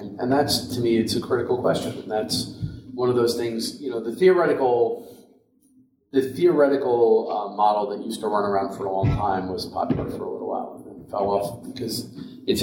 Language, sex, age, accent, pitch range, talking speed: English, male, 40-59, American, 100-145 Hz, 205 wpm